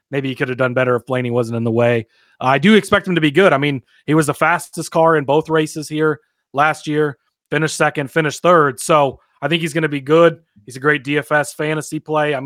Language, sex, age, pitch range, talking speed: English, male, 30-49, 125-155 Hz, 250 wpm